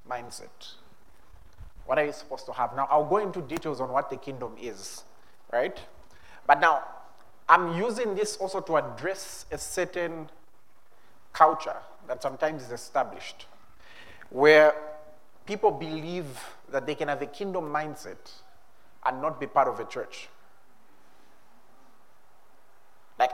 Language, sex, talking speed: English, male, 130 wpm